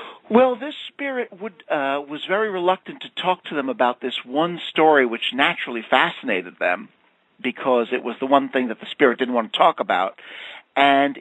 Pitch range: 120-170 Hz